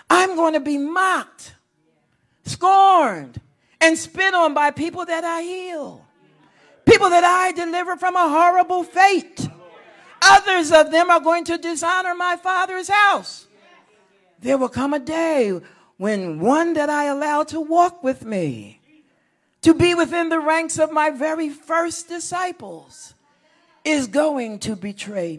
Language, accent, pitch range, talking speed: English, American, 310-380 Hz, 140 wpm